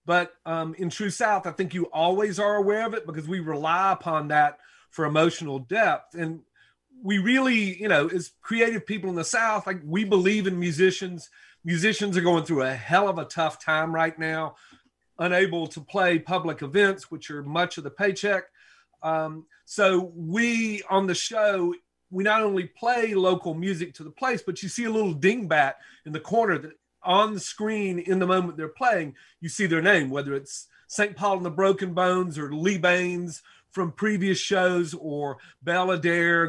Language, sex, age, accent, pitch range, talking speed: English, male, 40-59, American, 165-200 Hz, 185 wpm